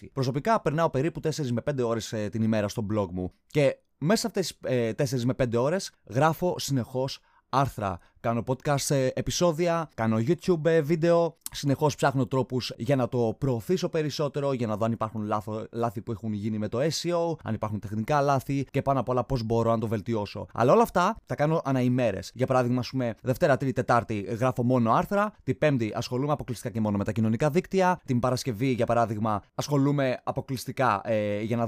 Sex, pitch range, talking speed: male, 115-160 Hz, 185 wpm